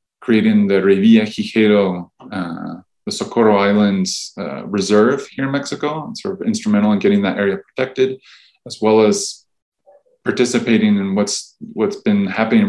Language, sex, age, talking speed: English, male, 20-39, 145 wpm